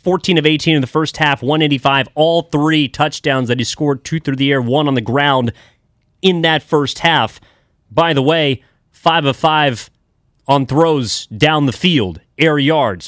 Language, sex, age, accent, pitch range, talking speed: English, male, 30-49, American, 135-170 Hz, 180 wpm